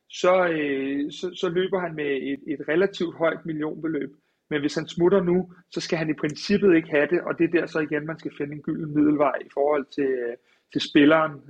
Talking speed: 220 wpm